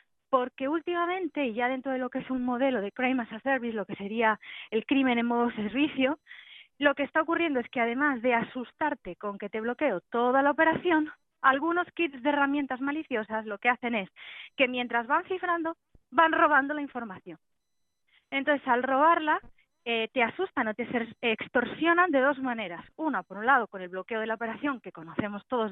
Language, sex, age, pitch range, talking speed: Spanish, female, 30-49, 230-295 Hz, 190 wpm